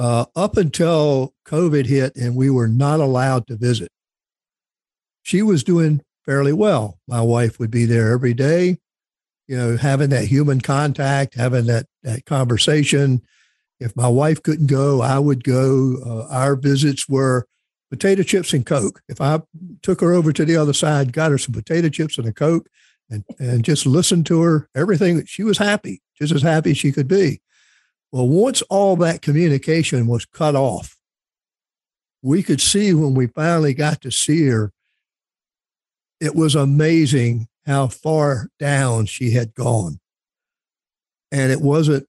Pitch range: 130-160 Hz